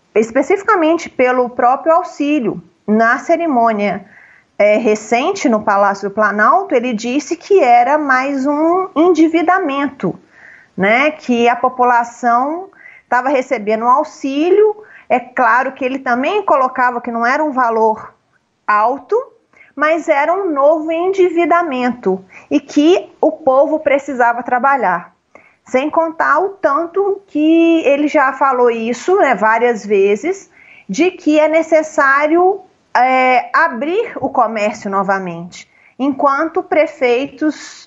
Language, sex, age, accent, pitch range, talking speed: Portuguese, female, 30-49, Brazilian, 235-330 Hz, 110 wpm